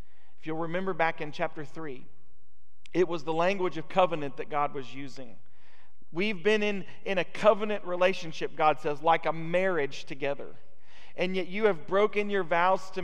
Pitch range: 150-185 Hz